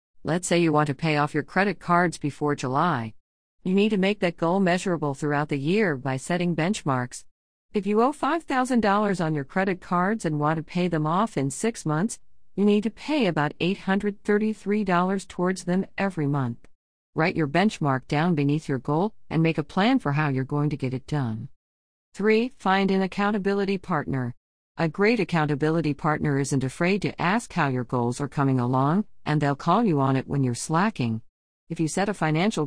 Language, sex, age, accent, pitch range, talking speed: English, female, 50-69, American, 140-190 Hz, 190 wpm